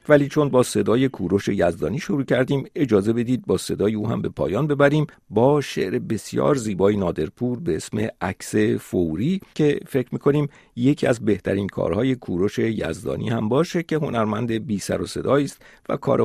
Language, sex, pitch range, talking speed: Persian, male, 105-145 Hz, 170 wpm